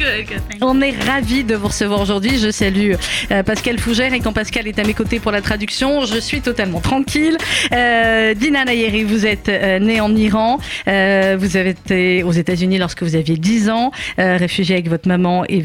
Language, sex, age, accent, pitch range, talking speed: French, female, 40-59, French, 185-220 Hz, 205 wpm